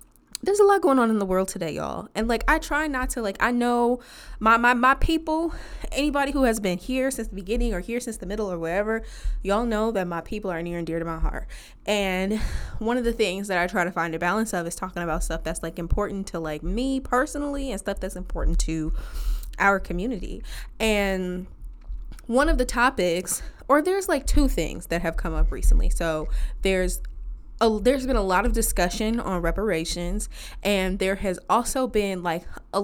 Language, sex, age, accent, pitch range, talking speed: English, female, 20-39, American, 175-235 Hz, 205 wpm